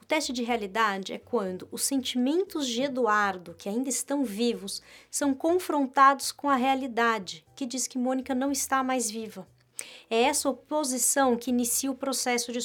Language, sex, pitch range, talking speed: Portuguese, female, 215-260 Hz, 165 wpm